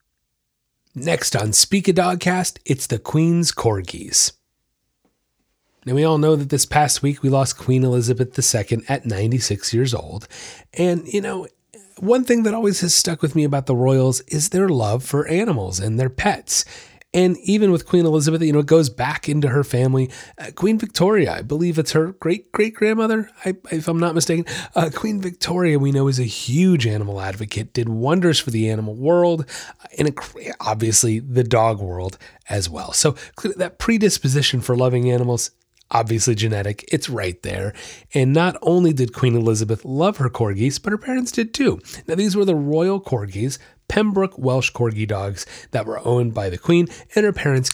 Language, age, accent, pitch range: English, 30-49, American, 115-175 Hz